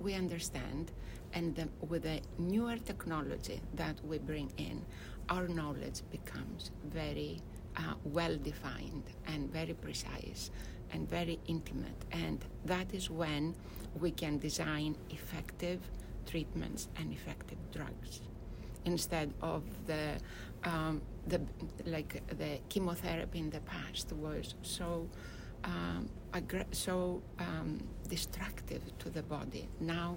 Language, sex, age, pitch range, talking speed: English, female, 60-79, 135-175 Hz, 115 wpm